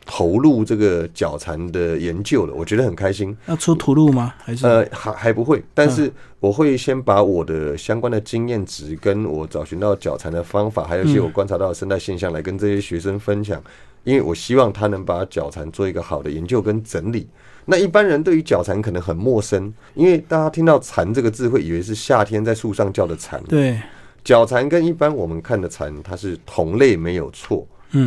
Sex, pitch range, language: male, 90-125 Hz, Chinese